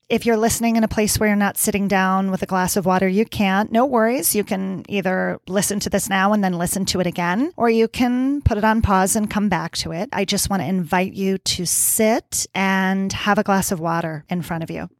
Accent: American